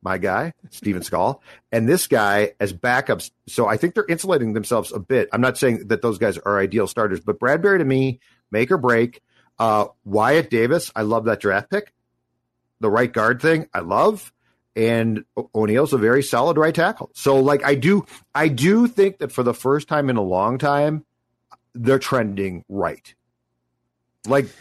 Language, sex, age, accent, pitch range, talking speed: English, male, 40-59, American, 100-145 Hz, 185 wpm